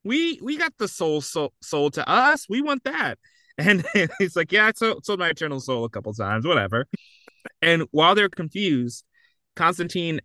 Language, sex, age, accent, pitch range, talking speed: English, male, 20-39, American, 135-200 Hz, 185 wpm